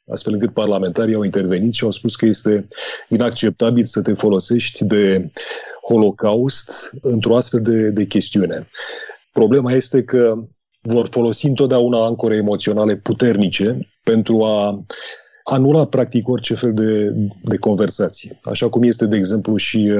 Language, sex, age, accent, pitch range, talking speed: Romanian, male, 30-49, native, 105-120 Hz, 135 wpm